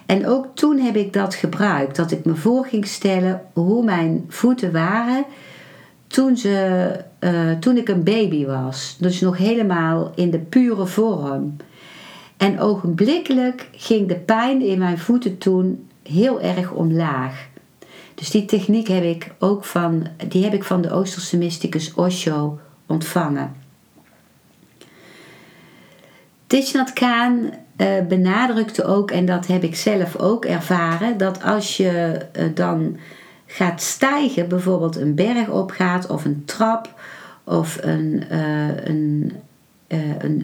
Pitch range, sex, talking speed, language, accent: 170-225 Hz, female, 130 wpm, Dutch, Dutch